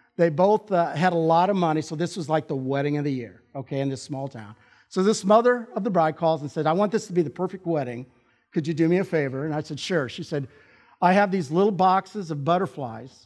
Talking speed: 260 wpm